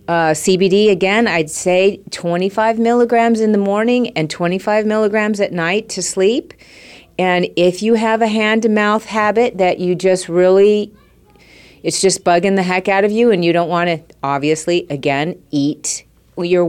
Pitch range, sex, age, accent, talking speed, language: 165-215 Hz, female, 40-59, American, 160 wpm, English